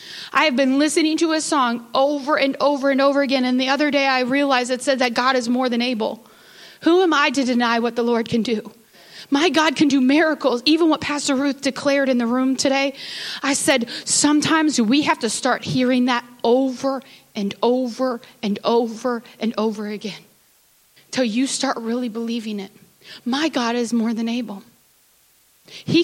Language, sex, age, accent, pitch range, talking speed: English, female, 30-49, American, 240-295 Hz, 185 wpm